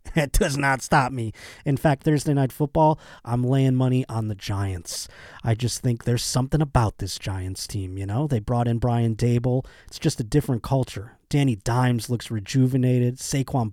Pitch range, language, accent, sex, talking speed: 120-155 Hz, English, American, male, 185 wpm